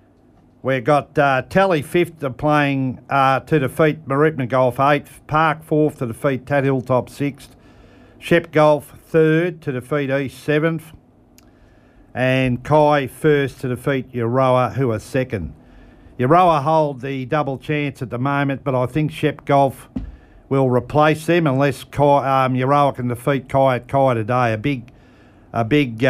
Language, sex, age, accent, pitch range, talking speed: English, male, 50-69, Australian, 120-145 Hz, 150 wpm